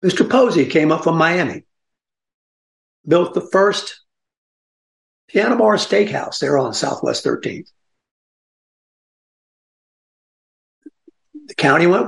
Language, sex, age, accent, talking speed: English, male, 60-79, American, 95 wpm